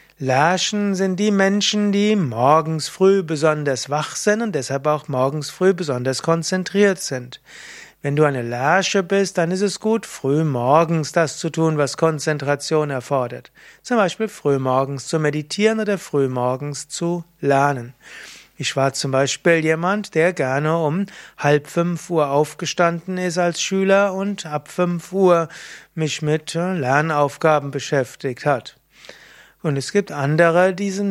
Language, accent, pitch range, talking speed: German, German, 140-185 Hz, 145 wpm